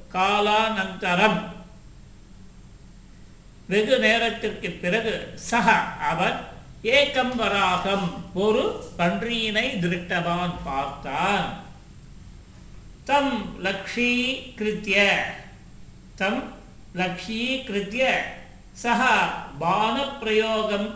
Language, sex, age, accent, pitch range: Tamil, male, 50-69, native, 175-225 Hz